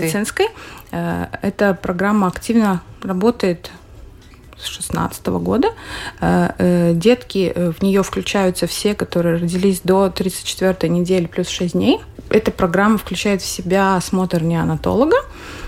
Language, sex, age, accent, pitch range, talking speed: Russian, female, 20-39, native, 175-215 Hz, 105 wpm